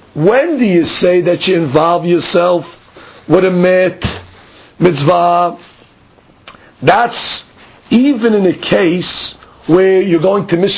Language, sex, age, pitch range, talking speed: English, male, 50-69, 170-210 Hz, 120 wpm